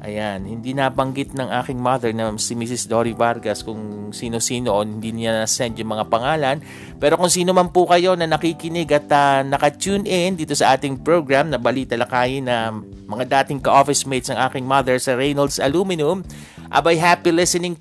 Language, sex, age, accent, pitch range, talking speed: Filipino, male, 50-69, native, 120-160 Hz, 175 wpm